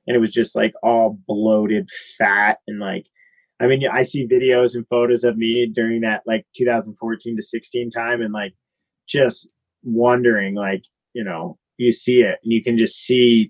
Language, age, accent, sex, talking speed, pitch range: English, 30-49, American, male, 180 wpm, 110-125 Hz